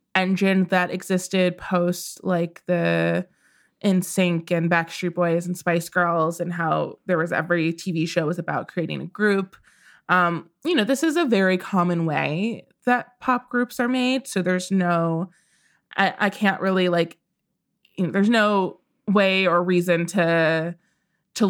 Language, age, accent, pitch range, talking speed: English, 20-39, American, 175-195 Hz, 155 wpm